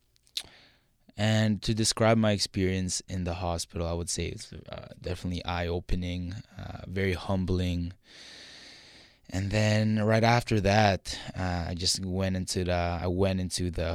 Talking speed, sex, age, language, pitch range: 140 wpm, male, 20-39, English, 85-110 Hz